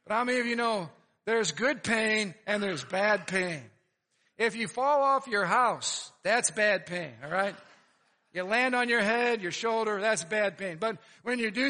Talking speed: 195 wpm